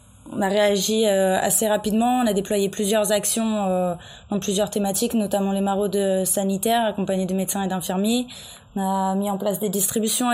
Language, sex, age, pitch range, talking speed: French, female, 20-39, 200-230 Hz, 170 wpm